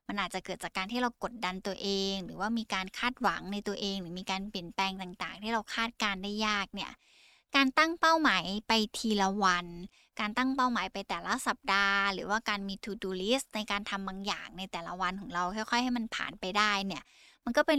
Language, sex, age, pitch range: Thai, female, 10-29, 195-235 Hz